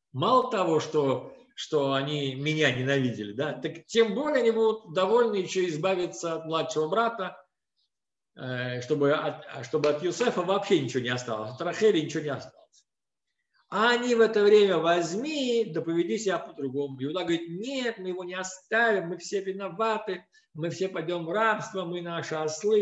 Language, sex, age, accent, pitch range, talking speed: Russian, male, 50-69, native, 140-210 Hz, 170 wpm